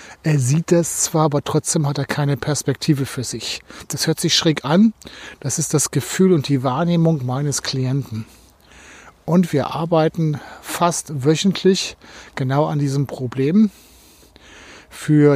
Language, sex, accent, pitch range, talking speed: German, male, German, 140-165 Hz, 140 wpm